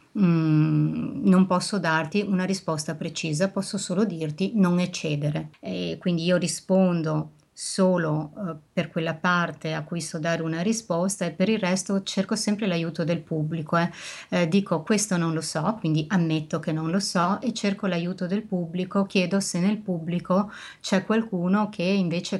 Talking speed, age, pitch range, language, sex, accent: 165 wpm, 30-49, 165-190 Hz, Italian, female, native